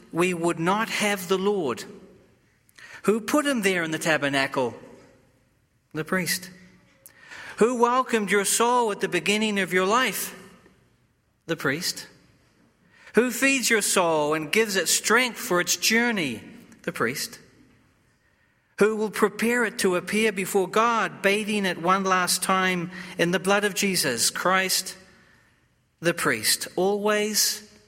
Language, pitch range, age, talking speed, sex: English, 145-205 Hz, 40-59, 135 wpm, male